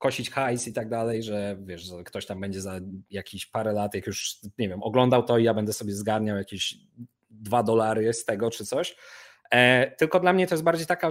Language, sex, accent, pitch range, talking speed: Polish, male, native, 110-135 Hz, 210 wpm